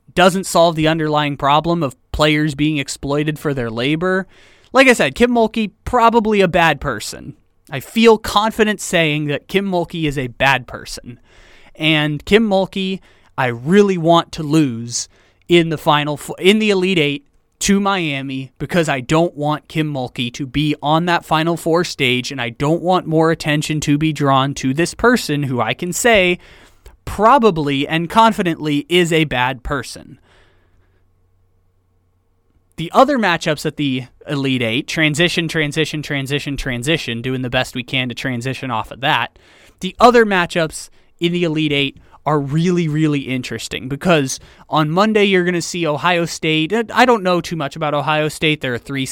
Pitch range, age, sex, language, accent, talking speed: 135-175 Hz, 20-39, male, English, American, 170 wpm